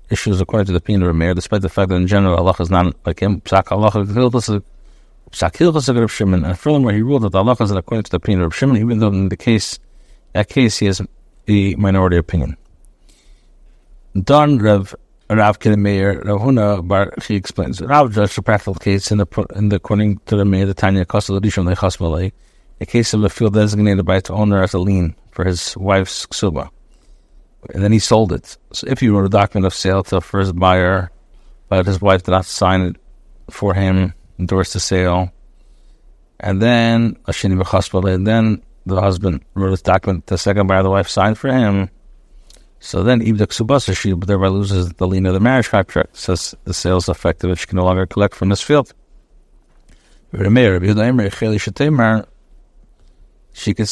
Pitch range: 95-110 Hz